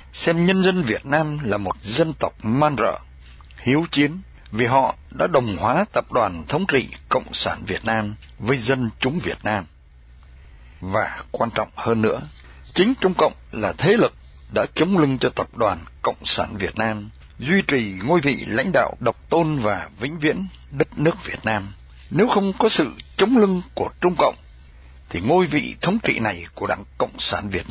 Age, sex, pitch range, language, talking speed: 60-79, male, 95-150 Hz, Vietnamese, 190 wpm